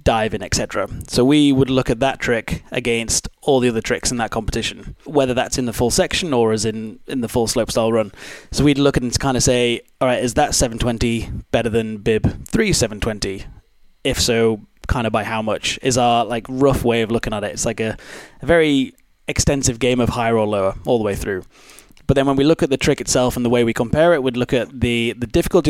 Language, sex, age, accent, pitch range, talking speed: English, male, 20-39, British, 110-130 Hz, 240 wpm